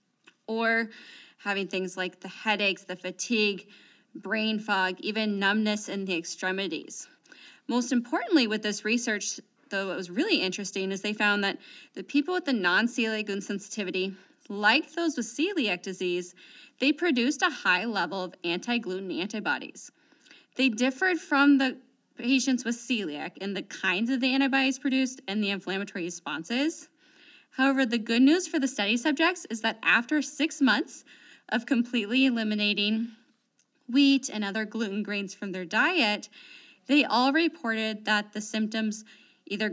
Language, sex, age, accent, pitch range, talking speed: English, female, 20-39, American, 210-275 Hz, 150 wpm